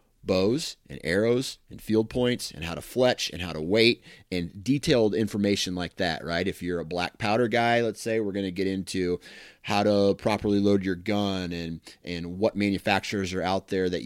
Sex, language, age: male, English, 30-49